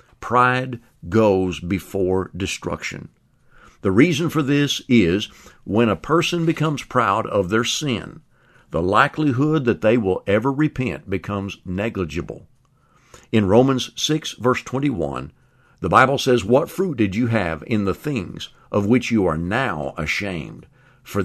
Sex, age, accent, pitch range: male, 50-69, American, 95-130 Hz